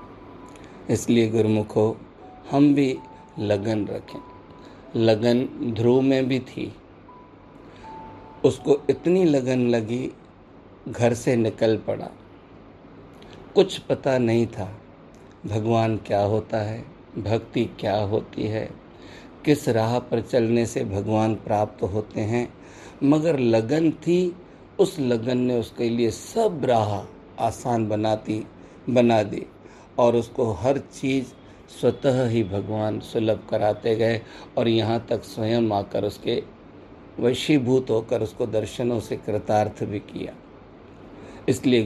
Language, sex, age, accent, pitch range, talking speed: Hindi, male, 50-69, native, 110-130 Hz, 115 wpm